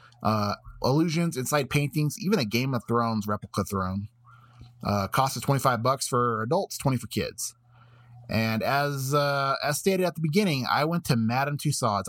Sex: male